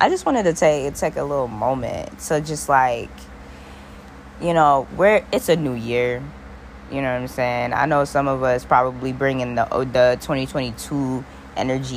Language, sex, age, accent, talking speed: English, female, 10-29, American, 175 wpm